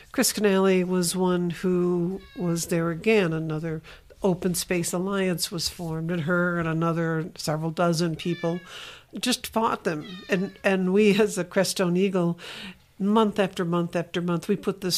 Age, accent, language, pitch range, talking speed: 60-79, American, English, 165-190 Hz, 155 wpm